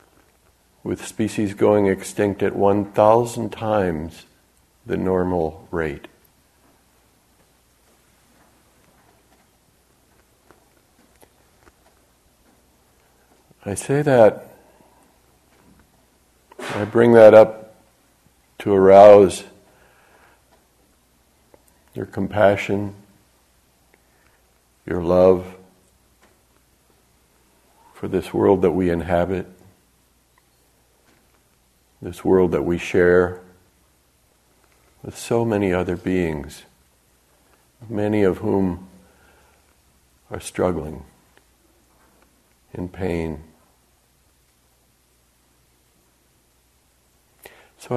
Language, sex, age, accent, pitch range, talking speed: English, male, 60-79, American, 65-100 Hz, 60 wpm